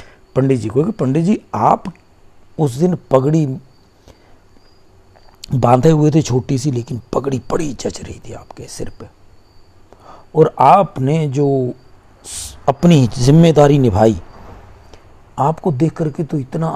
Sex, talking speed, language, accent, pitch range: male, 120 wpm, Hindi, native, 95-150 Hz